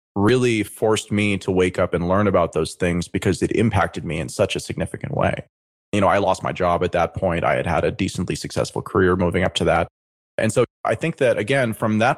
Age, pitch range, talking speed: 20-39, 90-110 Hz, 235 wpm